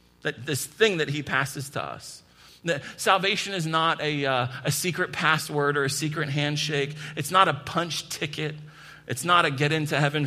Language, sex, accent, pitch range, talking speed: English, male, American, 125-160 Hz, 185 wpm